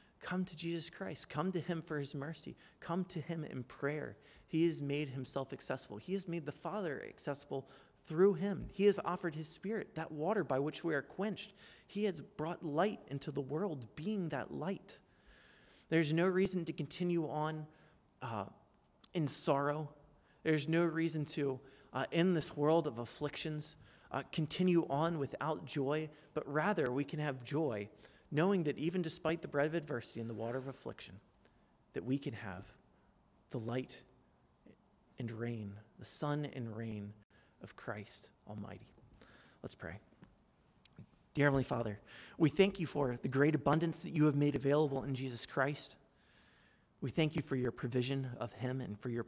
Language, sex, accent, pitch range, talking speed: English, male, American, 130-165 Hz, 170 wpm